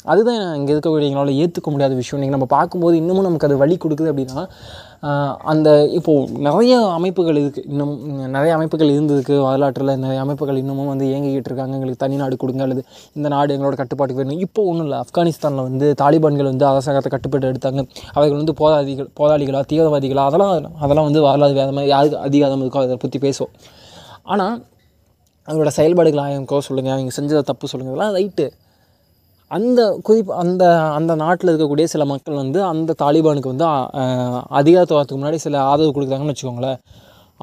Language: Tamil